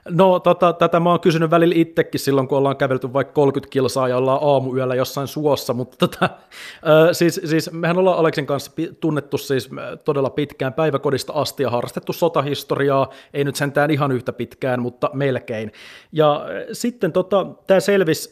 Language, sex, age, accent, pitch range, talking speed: Finnish, male, 30-49, native, 130-160 Hz, 165 wpm